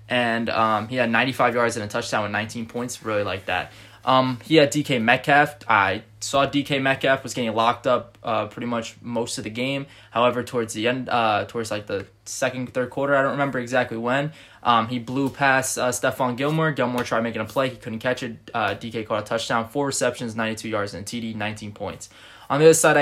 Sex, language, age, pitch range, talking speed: male, English, 20-39, 115-135 Hz, 220 wpm